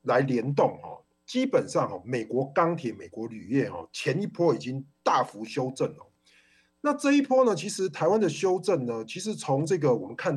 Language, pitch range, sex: Chinese, 135-220 Hz, male